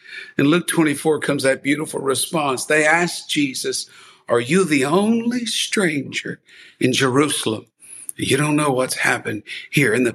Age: 60-79